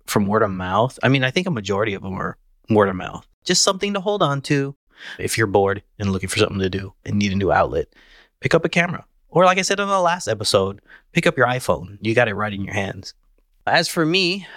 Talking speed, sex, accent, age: 255 wpm, male, American, 20-39